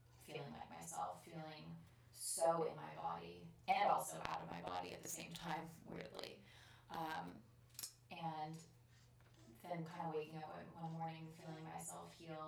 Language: English